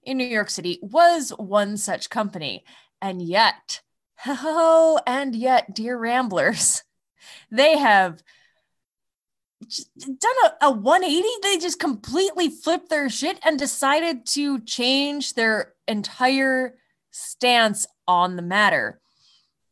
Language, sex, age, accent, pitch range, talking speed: English, female, 20-39, American, 200-275 Hz, 115 wpm